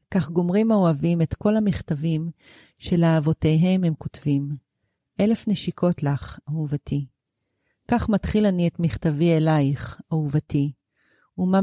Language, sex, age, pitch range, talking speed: Hebrew, female, 40-59, 150-190 Hz, 110 wpm